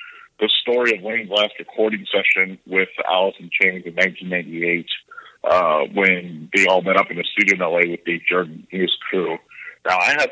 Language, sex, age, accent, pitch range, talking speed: English, male, 50-69, American, 95-120 Hz, 200 wpm